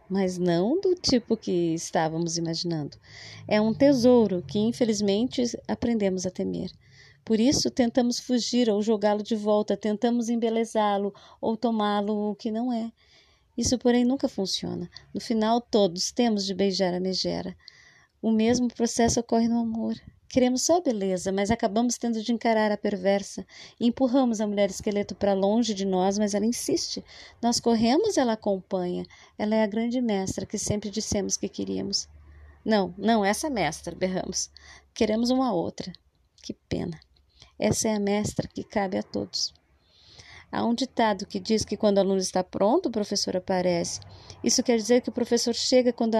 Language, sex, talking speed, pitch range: Portuguese, female, 160 wpm, 185-235 Hz